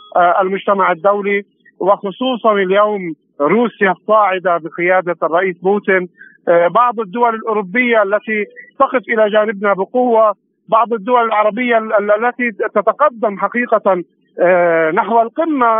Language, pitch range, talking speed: Arabic, 190-235 Hz, 95 wpm